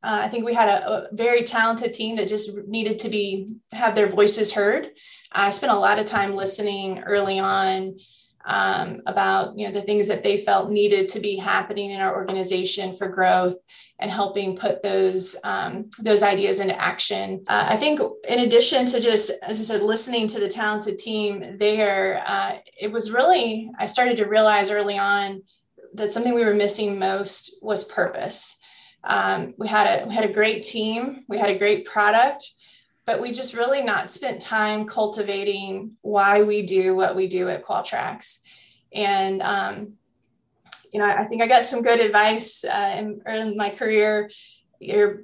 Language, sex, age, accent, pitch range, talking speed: English, female, 20-39, American, 200-225 Hz, 180 wpm